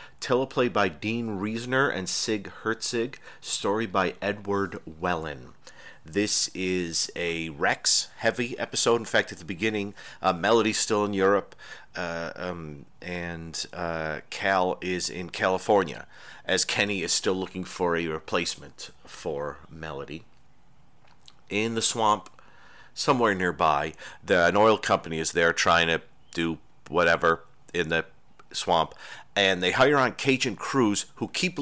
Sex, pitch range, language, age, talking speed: male, 90-115 Hz, English, 40-59, 135 wpm